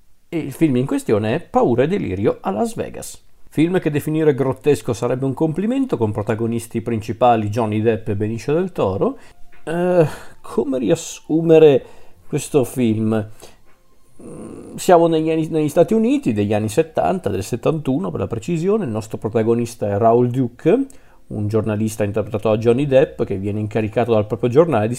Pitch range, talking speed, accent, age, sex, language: 110-145 Hz, 155 wpm, native, 40-59, male, Italian